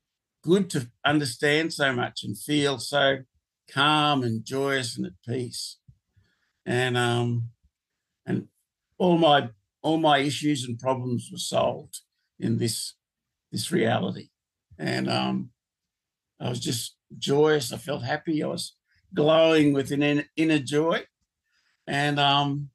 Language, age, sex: English, 60-79, male